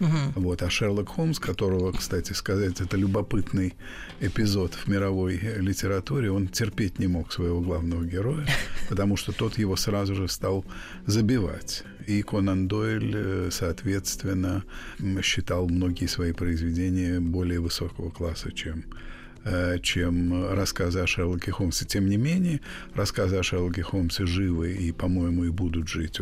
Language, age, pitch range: Russian, 50-69, 85-100 Hz